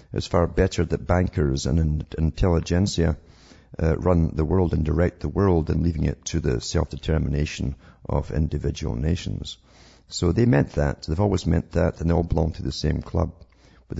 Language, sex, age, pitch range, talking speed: English, male, 50-69, 75-90 Hz, 175 wpm